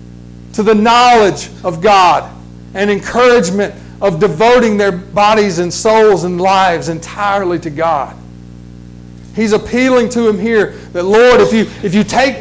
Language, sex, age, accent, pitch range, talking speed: English, male, 40-59, American, 145-225 Hz, 145 wpm